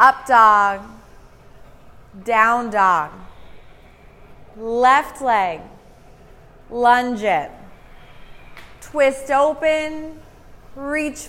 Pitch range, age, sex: 210-270 Hz, 20-39, female